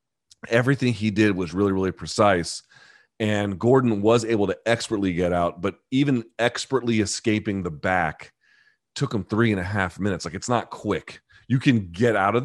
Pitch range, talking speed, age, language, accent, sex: 95-115 Hz, 180 wpm, 30-49, English, American, male